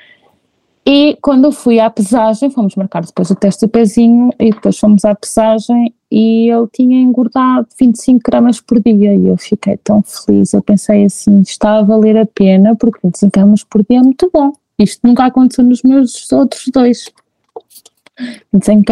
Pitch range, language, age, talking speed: 200-235 Hz, Portuguese, 20-39, 175 wpm